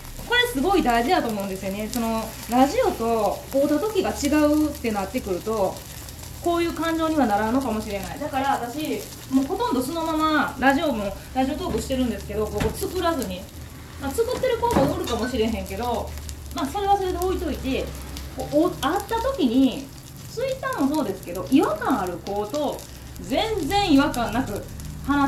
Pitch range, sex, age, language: 210-345 Hz, female, 20-39, Japanese